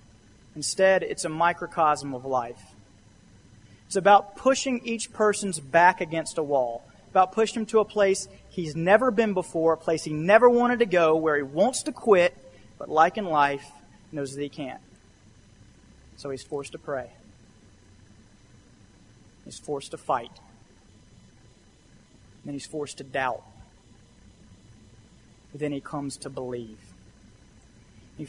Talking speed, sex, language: 140 wpm, male, English